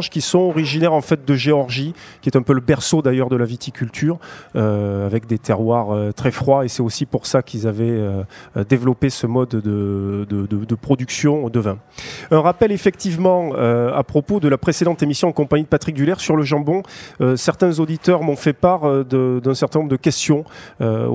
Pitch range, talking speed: 130-165 Hz, 210 wpm